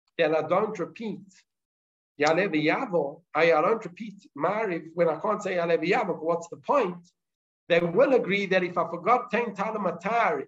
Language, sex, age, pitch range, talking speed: English, male, 50-69, 165-210 Hz, 160 wpm